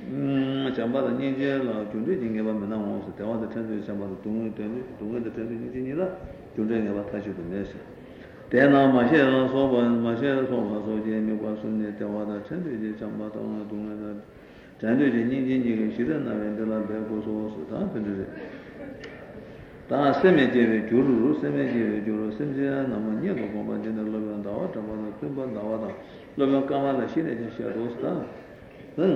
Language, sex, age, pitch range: Italian, male, 60-79, 110-130 Hz